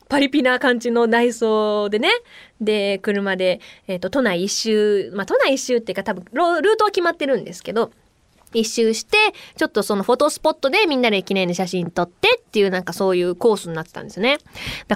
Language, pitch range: Japanese, 195-310 Hz